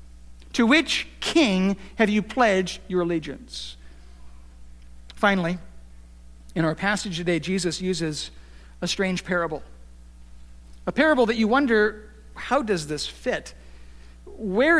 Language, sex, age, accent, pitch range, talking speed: English, male, 50-69, American, 165-245 Hz, 115 wpm